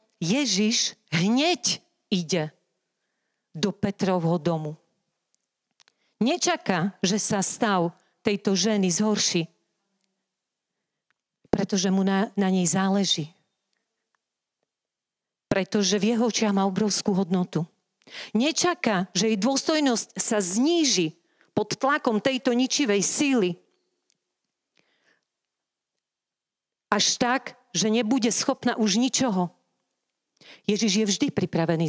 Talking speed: 90 wpm